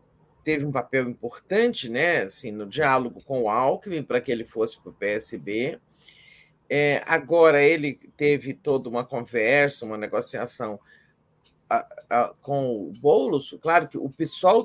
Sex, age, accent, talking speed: male, 50-69, Brazilian, 130 wpm